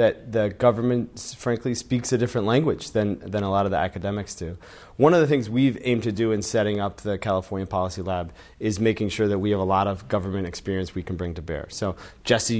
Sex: male